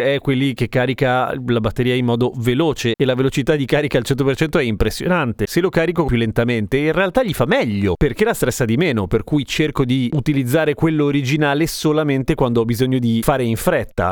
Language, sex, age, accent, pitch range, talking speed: Italian, male, 30-49, native, 110-145 Hz, 205 wpm